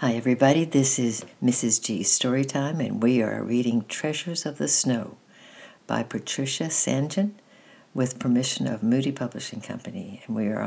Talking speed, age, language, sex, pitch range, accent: 150 wpm, 60-79, English, female, 115-140 Hz, American